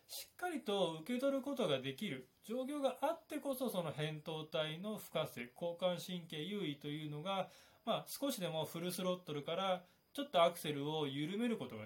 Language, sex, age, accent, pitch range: Japanese, male, 20-39, native, 140-210 Hz